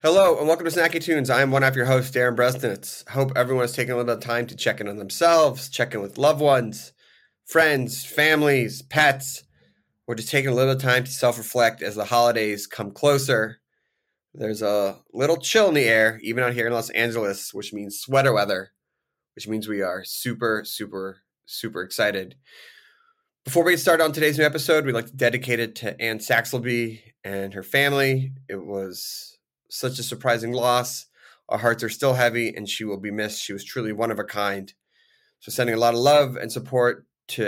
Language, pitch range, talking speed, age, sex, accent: English, 110-135 Hz, 200 wpm, 20-39, male, American